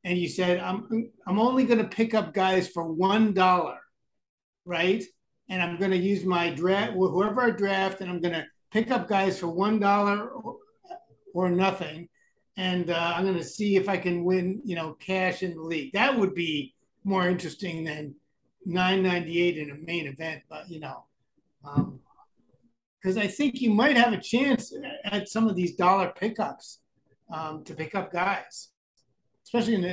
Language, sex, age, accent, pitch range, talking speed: English, male, 60-79, American, 165-200 Hz, 175 wpm